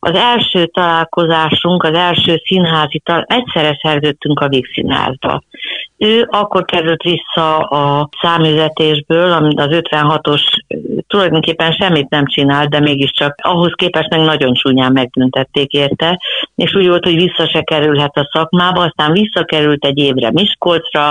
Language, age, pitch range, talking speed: Hungarian, 60-79, 145-175 Hz, 135 wpm